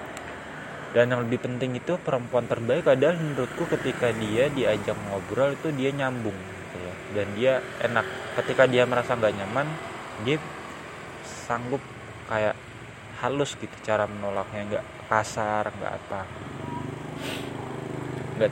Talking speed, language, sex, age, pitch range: 125 wpm, Indonesian, male, 20-39, 105-130 Hz